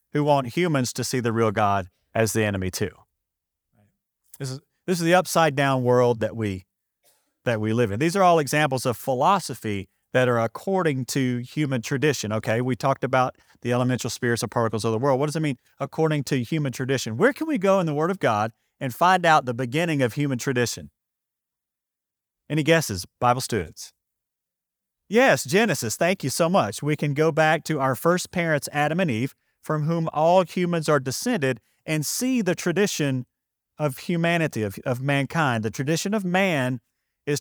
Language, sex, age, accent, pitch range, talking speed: English, male, 40-59, American, 120-160 Hz, 185 wpm